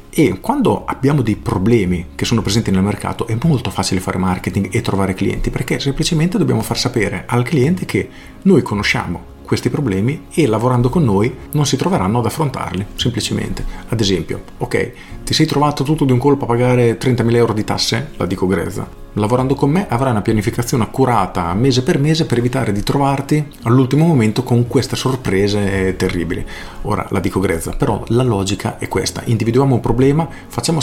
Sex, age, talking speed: male, 40-59, 180 wpm